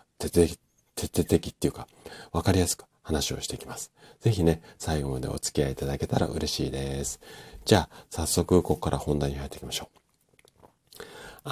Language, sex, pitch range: Japanese, male, 75-105 Hz